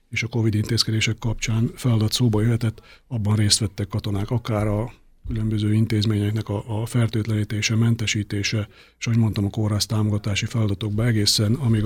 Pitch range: 105-115 Hz